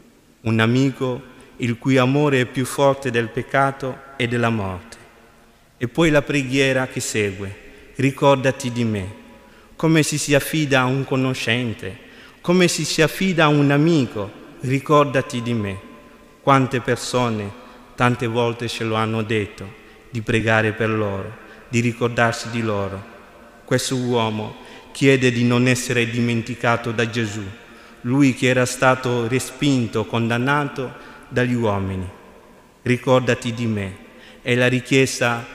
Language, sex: Italian, male